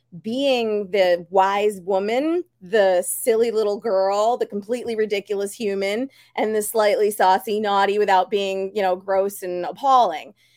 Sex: female